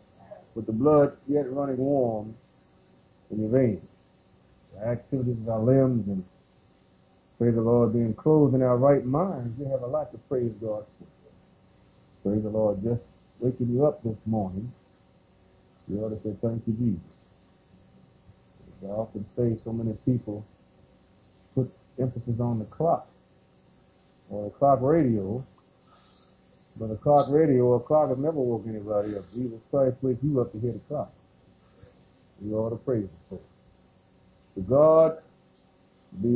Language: English